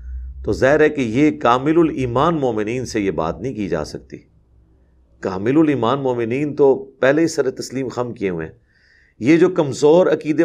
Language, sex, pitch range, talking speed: Urdu, male, 100-140 Hz, 180 wpm